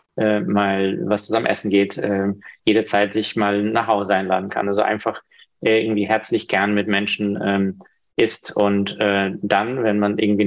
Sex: male